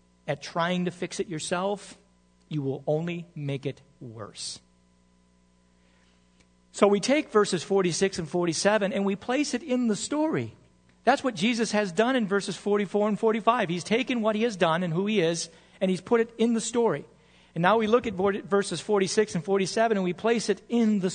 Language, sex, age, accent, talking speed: English, male, 40-59, American, 195 wpm